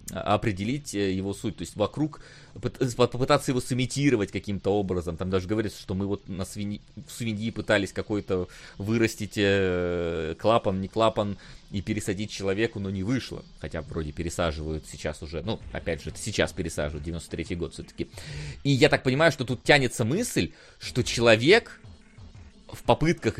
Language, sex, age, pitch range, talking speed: Russian, male, 30-49, 90-120 Hz, 150 wpm